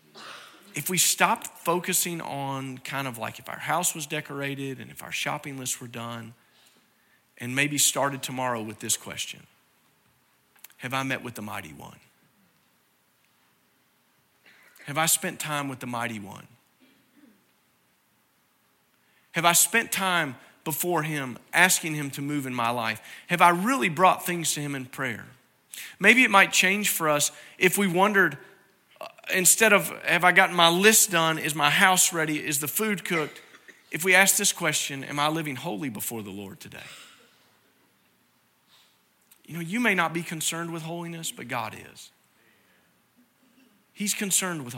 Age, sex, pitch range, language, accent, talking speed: 40-59, male, 135-185 Hz, English, American, 155 wpm